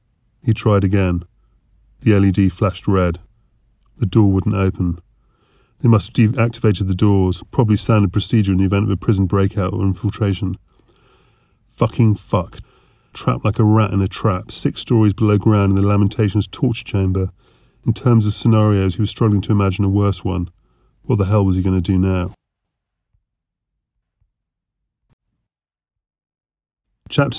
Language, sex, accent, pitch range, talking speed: English, male, British, 100-120 Hz, 150 wpm